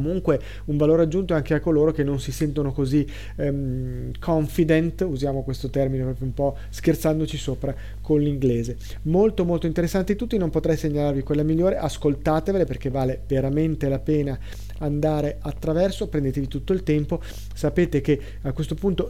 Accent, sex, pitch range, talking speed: native, male, 140-165 Hz, 155 wpm